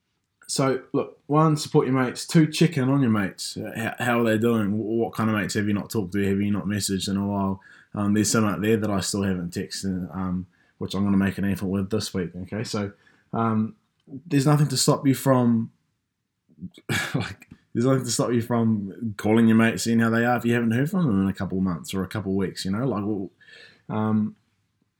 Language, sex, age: English, male, 20-39